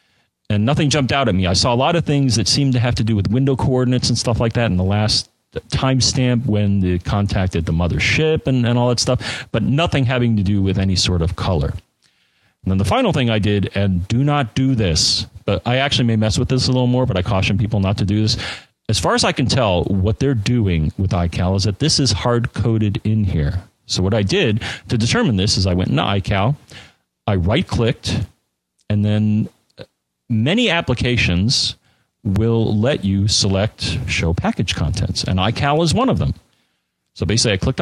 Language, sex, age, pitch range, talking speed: English, male, 40-59, 95-125 Hz, 210 wpm